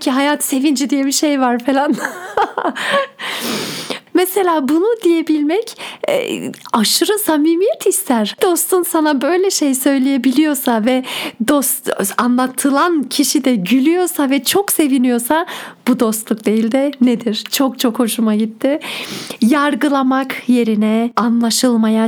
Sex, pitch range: female, 230-285 Hz